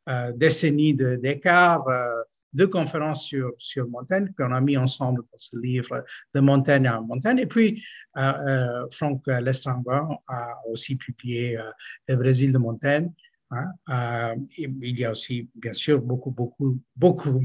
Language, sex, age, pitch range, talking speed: French, male, 50-69, 130-160 Hz, 160 wpm